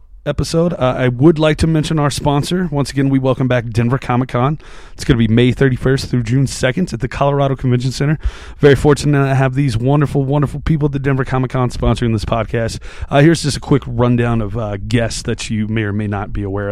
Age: 30-49